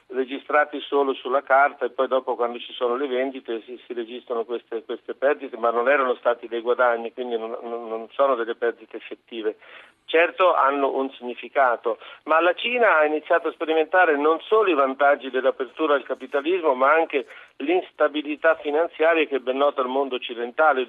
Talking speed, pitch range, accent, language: 170 wpm, 130-170 Hz, native, Italian